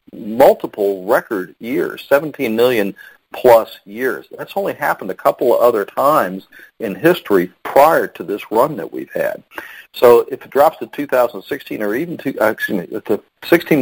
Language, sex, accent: English, male, American